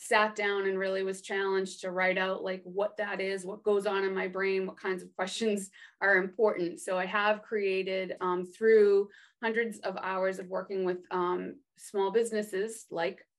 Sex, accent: female, American